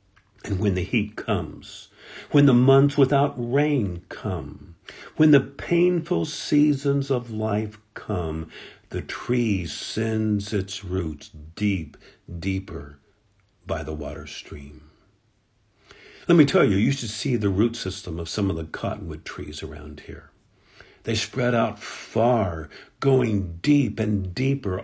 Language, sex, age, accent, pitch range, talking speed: English, male, 50-69, American, 90-130 Hz, 135 wpm